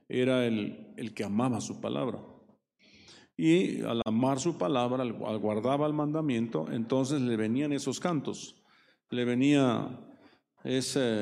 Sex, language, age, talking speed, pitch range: male, Spanish, 50-69, 135 wpm, 115-150 Hz